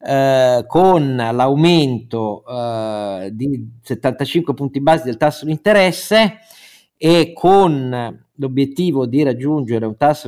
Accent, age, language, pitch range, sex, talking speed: native, 50-69, Italian, 120-150 Hz, male, 110 wpm